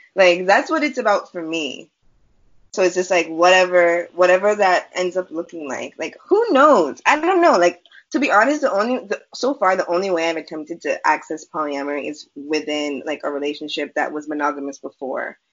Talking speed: 190 wpm